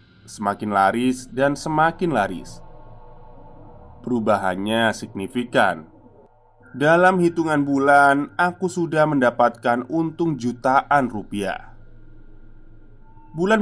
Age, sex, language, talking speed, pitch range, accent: 20-39, male, Indonesian, 75 wpm, 110-140 Hz, native